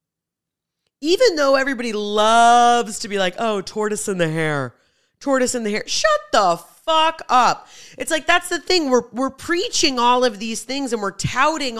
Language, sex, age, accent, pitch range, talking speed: English, female, 30-49, American, 175-270 Hz, 180 wpm